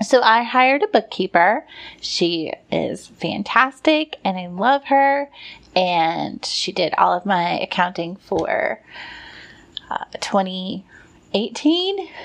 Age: 30-49